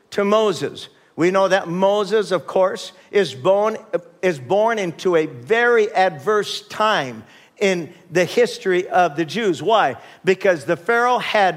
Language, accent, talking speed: English, American, 145 wpm